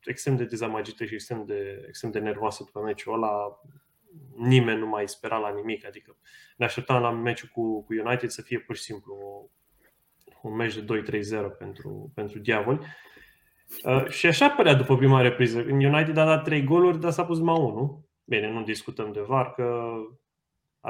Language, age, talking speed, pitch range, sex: Romanian, 20-39, 180 wpm, 110-135 Hz, male